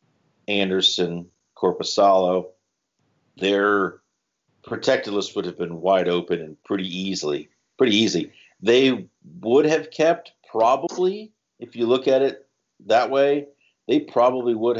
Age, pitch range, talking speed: 50-69, 90-110 Hz, 120 wpm